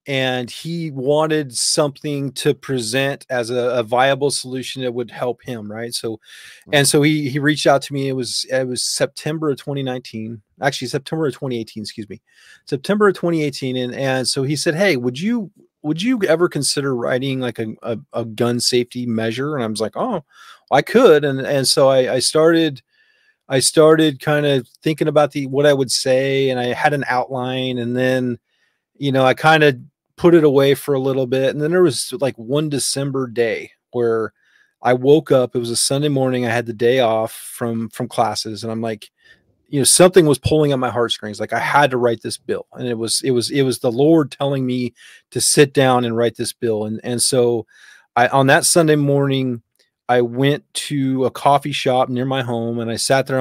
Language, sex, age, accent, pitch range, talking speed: English, male, 30-49, American, 120-145 Hz, 210 wpm